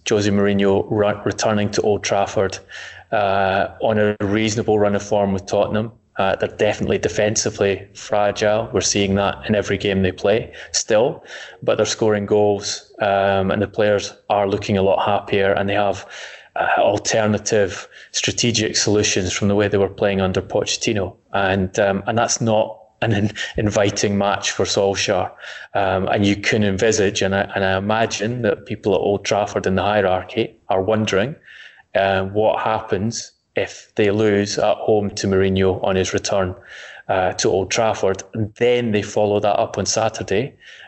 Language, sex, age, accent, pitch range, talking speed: English, male, 20-39, British, 100-105 Hz, 165 wpm